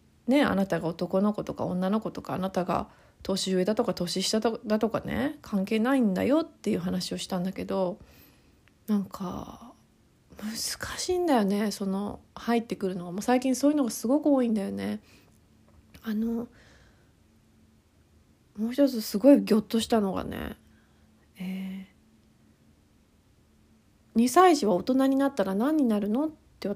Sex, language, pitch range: female, Japanese, 190-265 Hz